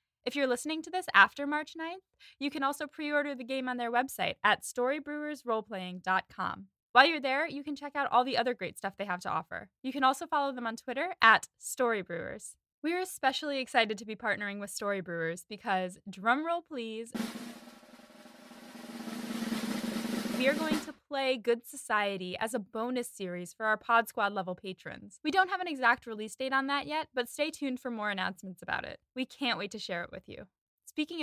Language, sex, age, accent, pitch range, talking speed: English, female, 10-29, American, 215-280 Hz, 195 wpm